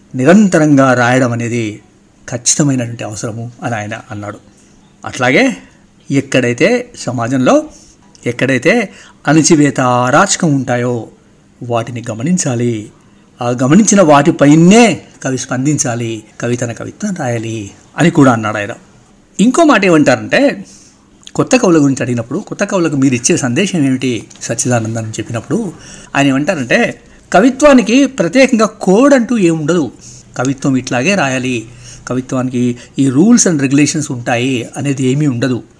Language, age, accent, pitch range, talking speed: Telugu, 60-79, native, 120-185 Hz, 105 wpm